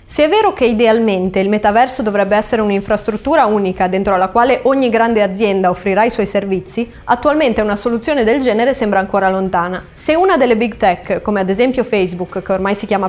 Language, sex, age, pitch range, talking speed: Italian, female, 20-39, 200-255 Hz, 195 wpm